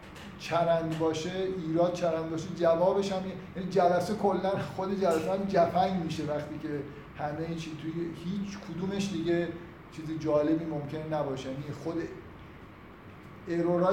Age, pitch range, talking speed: 50-69, 150-175 Hz, 130 wpm